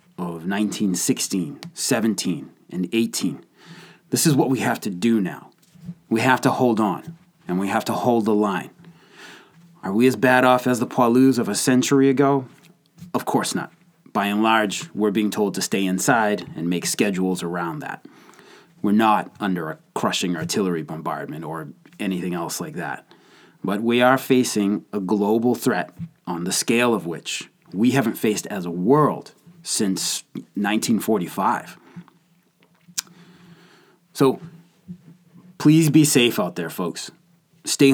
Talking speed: 150 wpm